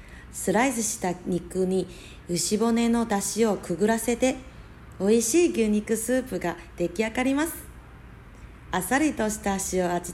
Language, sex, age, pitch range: Japanese, female, 40-59, 175-245 Hz